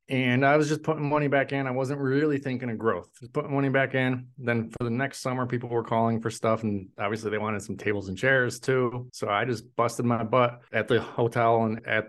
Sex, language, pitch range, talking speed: male, English, 100-125 Hz, 245 wpm